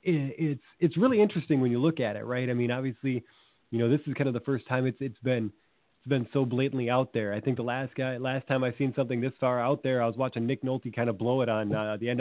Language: English